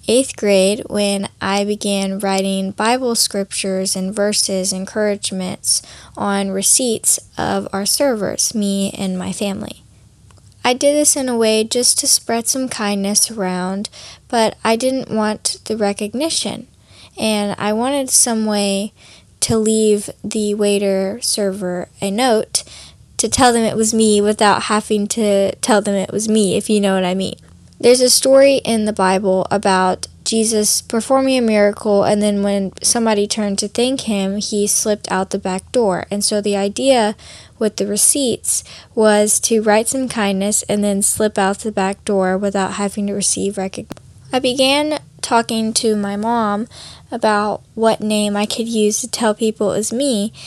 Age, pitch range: 10-29, 200-225 Hz